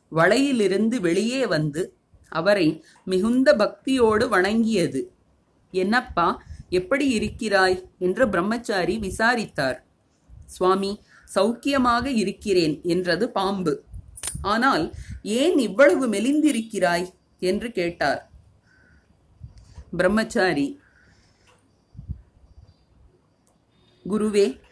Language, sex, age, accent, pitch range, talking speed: Tamil, female, 30-49, native, 185-250 Hz, 65 wpm